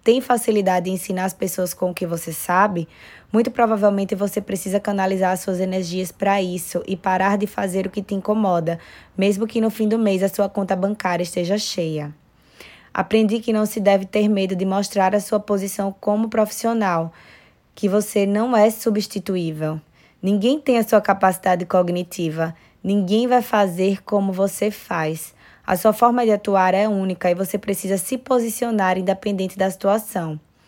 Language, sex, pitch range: Portuguese, female, 185-215 Hz